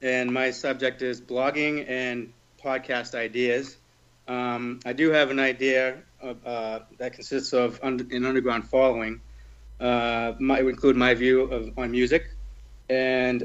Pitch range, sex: 120-140 Hz, male